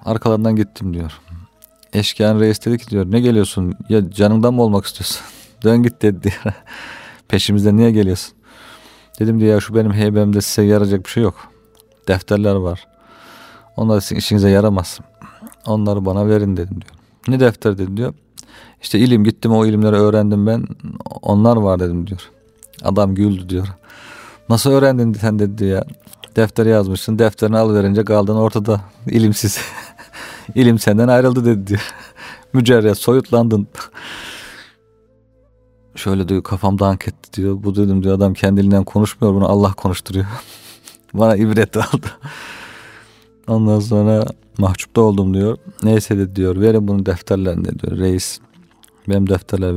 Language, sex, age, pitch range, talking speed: Turkish, male, 40-59, 100-110 Hz, 135 wpm